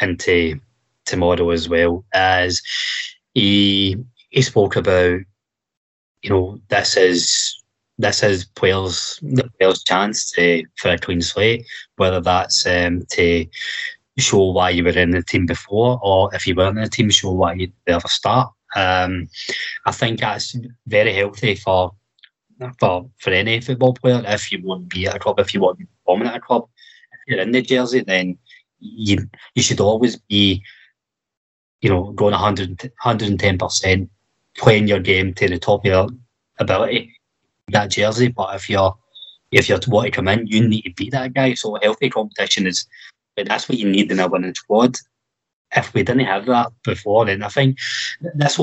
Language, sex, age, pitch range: English, male, 20-39, 95-120 Hz